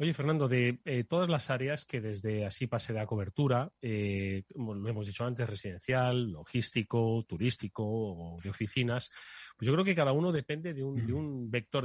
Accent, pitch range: Spanish, 115-135 Hz